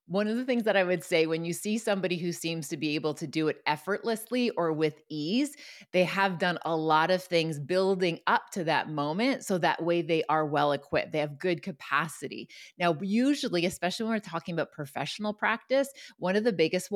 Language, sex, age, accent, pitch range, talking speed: English, female, 30-49, American, 160-205 Hz, 210 wpm